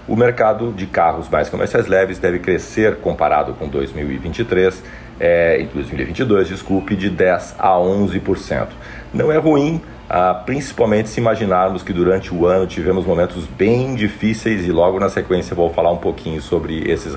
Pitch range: 90-110 Hz